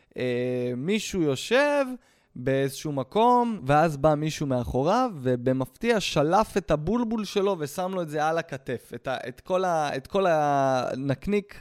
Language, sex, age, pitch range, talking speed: Hebrew, male, 20-39, 135-190 Hz, 145 wpm